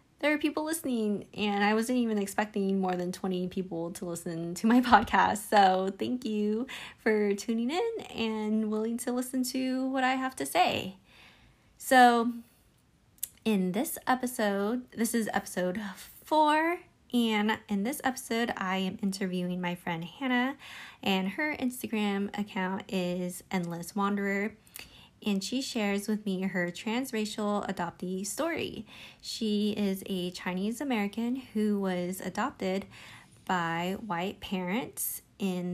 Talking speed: 135 wpm